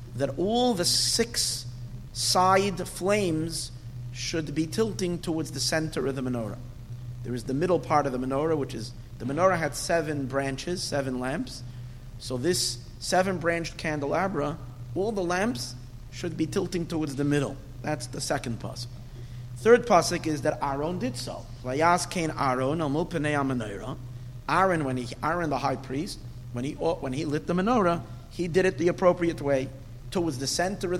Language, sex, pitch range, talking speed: English, male, 125-170 Hz, 160 wpm